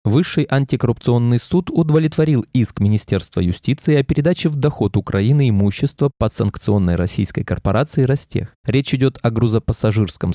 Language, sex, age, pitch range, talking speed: Russian, male, 20-39, 105-145 Hz, 120 wpm